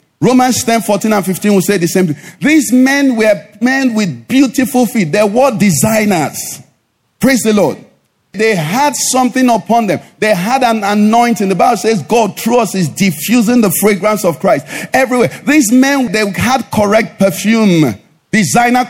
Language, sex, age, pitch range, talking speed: English, male, 50-69, 175-245 Hz, 165 wpm